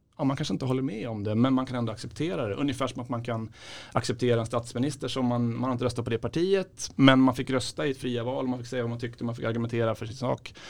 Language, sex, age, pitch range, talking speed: Swedish, male, 30-49, 115-130 Hz, 285 wpm